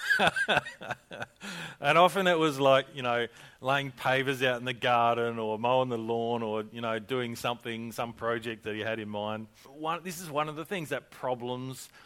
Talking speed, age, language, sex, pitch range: 190 wpm, 40-59, English, male, 110-135 Hz